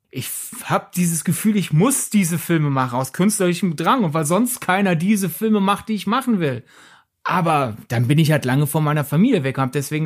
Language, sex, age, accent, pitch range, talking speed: German, male, 30-49, German, 160-195 Hz, 215 wpm